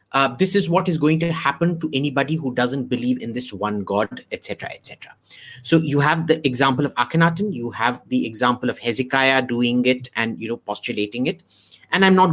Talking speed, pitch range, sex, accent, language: 215 wpm, 125-180 Hz, male, Indian, English